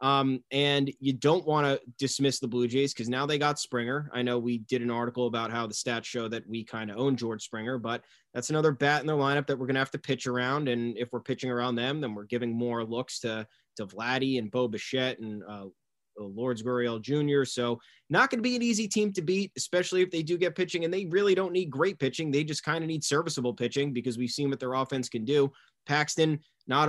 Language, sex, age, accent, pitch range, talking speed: English, male, 20-39, American, 120-145 Hz, 245 wpm